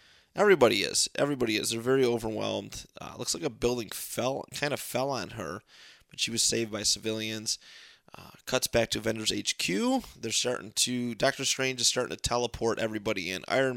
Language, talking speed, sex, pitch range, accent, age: English, 185 wpm, male, 105-120 Hz, American, 30-49